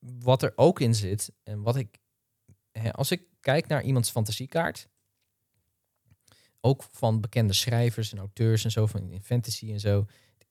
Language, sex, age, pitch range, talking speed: Dutch, male, 20-39, 105-120 Hz, 160 wpm